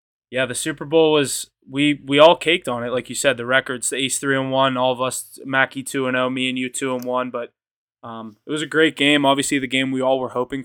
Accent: American